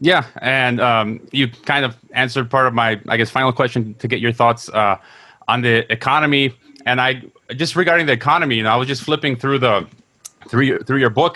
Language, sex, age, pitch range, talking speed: English, male, 30-49, 120-140 Hz, 220 wpm